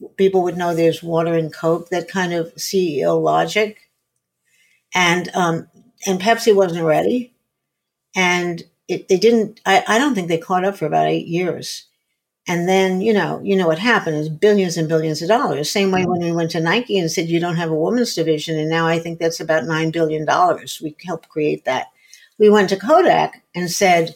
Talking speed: 205 wpm